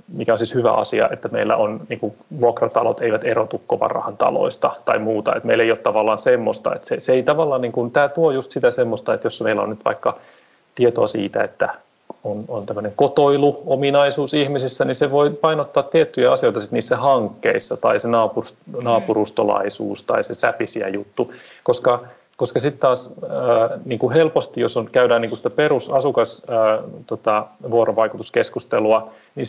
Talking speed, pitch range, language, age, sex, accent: 165 wpm, 110-175 Hz, Finnish, 30-49, male, native